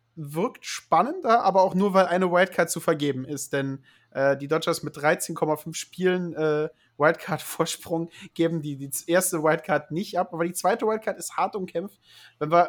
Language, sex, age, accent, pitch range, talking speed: German, male, 30-49, German, 155-185 Hz, 165 wpm